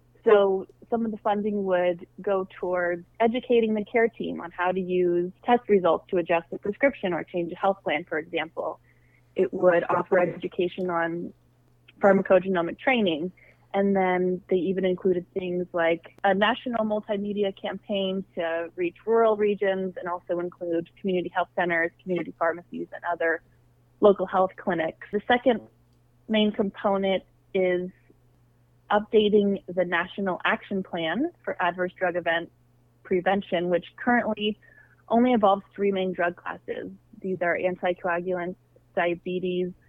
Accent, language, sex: American, English, female